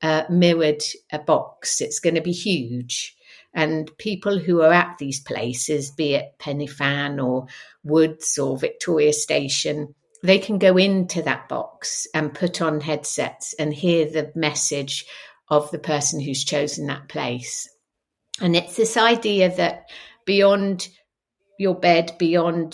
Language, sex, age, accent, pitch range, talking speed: English, female, 50-69, British, 145-175 Hz, 145 wpm